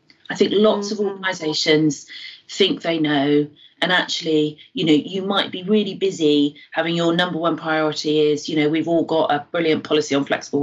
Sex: female